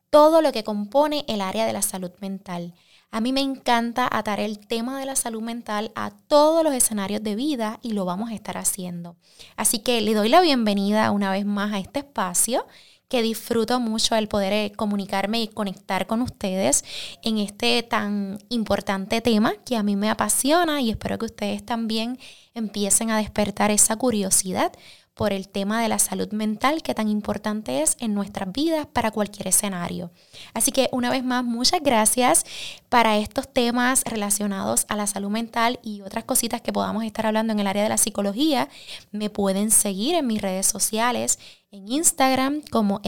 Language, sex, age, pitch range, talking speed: Spanish, female, 20-39, 200-245 Hz, 180 wpm